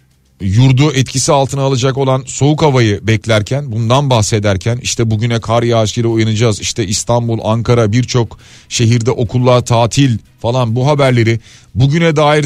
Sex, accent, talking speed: male, native, 130 wpm